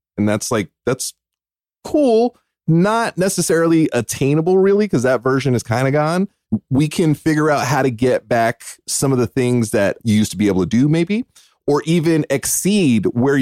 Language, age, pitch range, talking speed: English, 30-49, 105-140 Hz, 185 wpm